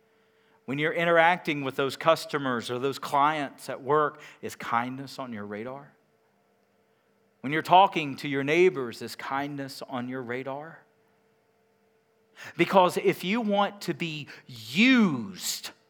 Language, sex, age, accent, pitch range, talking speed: English, male, 50-69, American, 145-220 Hz, 130 wpm